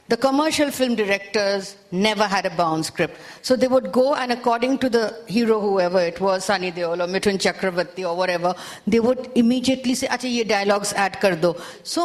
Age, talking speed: 50-69, 185 wpm